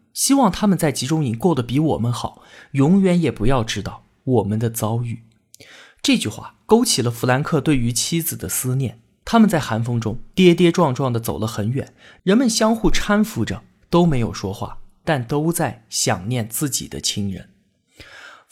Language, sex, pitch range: Chinese, male, 115-185 Hz